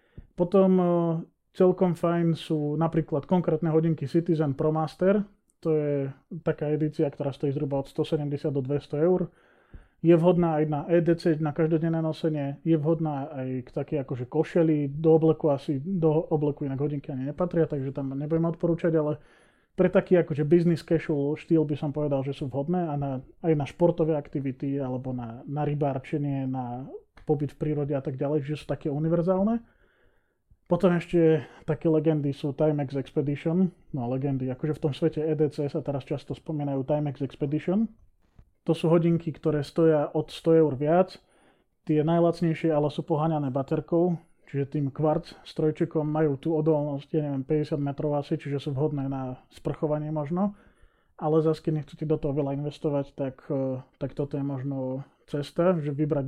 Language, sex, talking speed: Slovak, male, 165 wpm